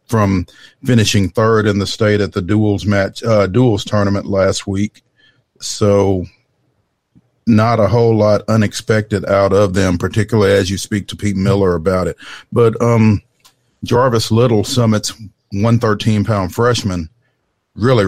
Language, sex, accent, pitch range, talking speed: English, male, American, 95-110 Hz, 140 wpm